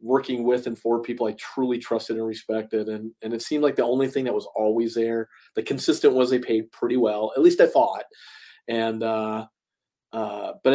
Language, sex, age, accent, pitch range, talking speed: English, male, 40-59, American, 110-120 Hz, 205 wpm